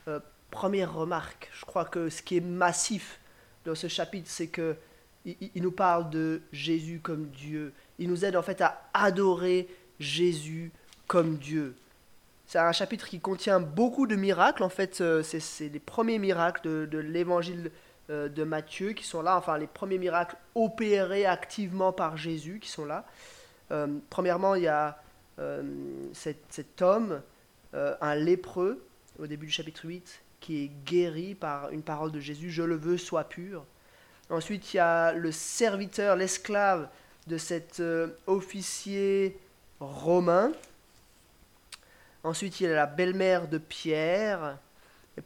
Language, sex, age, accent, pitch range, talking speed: French, male, 20-39, French, 155-185 Hz, 155 wpm